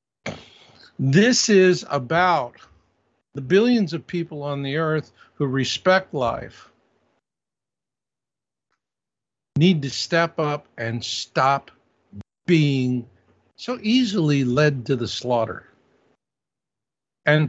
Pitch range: 145-200 Hz